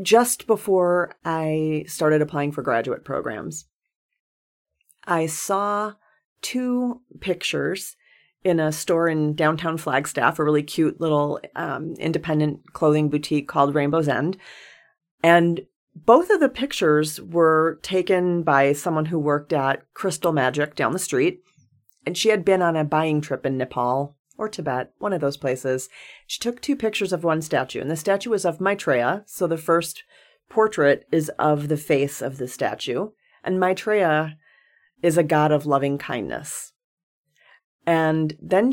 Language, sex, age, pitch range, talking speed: English, female, 40-59, 150-190 Hz, 150 wpm